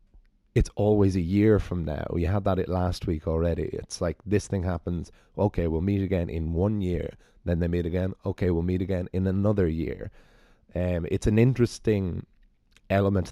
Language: English